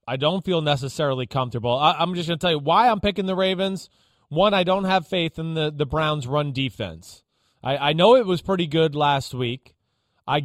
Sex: male